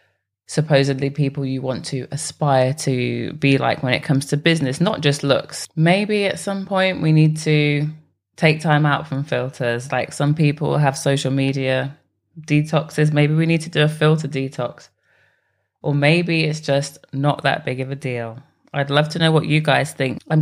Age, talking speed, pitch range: 20-39, 185 wpm, 135-155 Hz